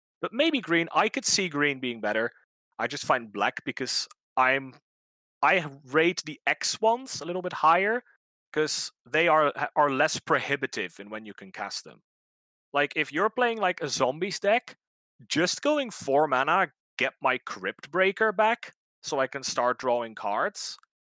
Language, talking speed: English, 165 wpm